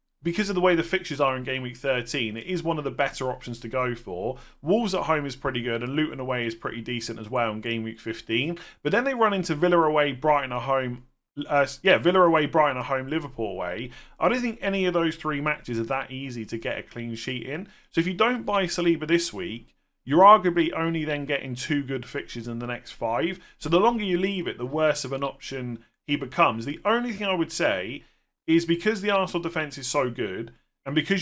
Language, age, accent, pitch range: English, 30-49, British, 125-170 Hz